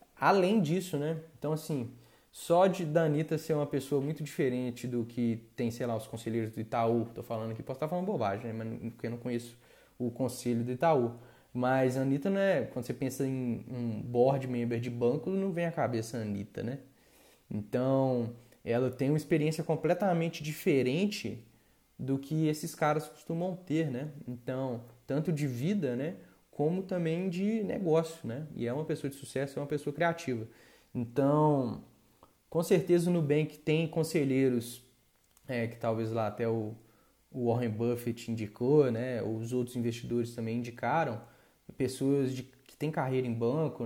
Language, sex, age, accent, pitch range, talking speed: Portuguese, male, 20-39, Brazilian, 120-155 Hz, 165 wpm